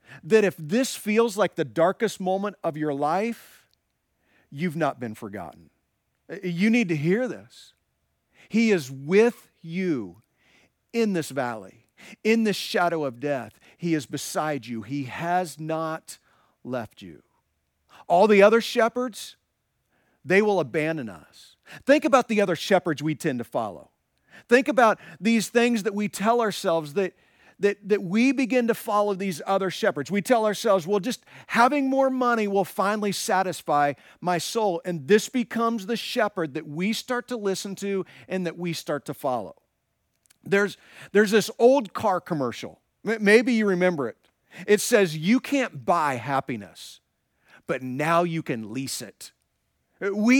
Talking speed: 155 wpm